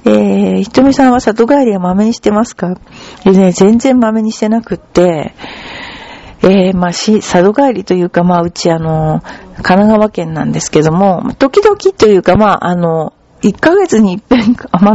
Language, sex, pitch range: Japanese, female, 175-230 Hz